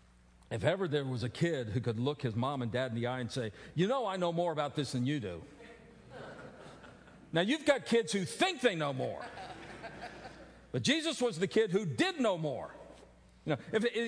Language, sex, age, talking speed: English, male, 50-69, 210 wpm